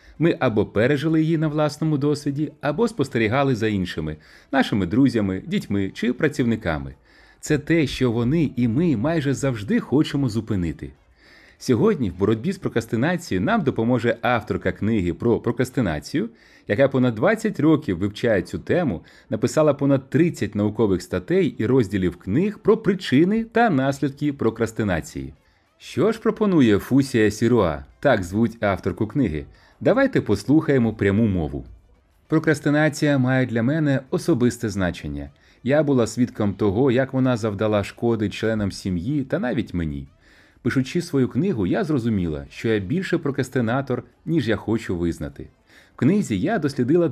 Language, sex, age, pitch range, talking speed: Ukrainian, male, 30-49, 100-145 Hz, 135 wpm